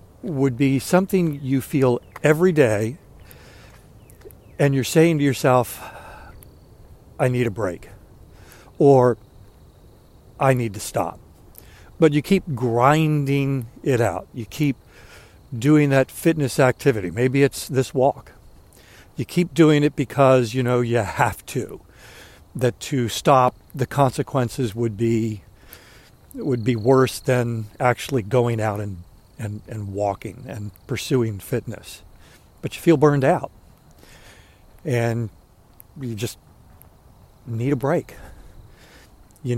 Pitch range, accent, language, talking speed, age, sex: 105-135 Hz, American, English, 120 wpm, 60-79, male